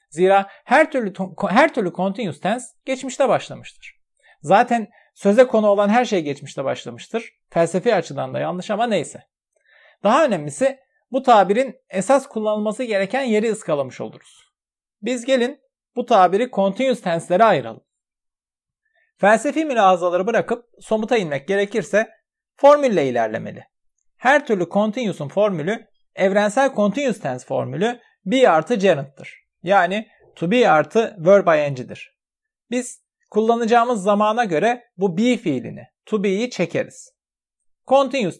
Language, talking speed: English, 120 wpm